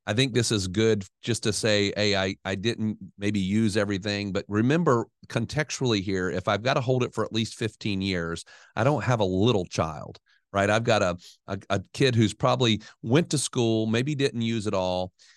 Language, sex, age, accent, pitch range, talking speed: English, male, 40-59, American, 100-120 Hz, 205 wpm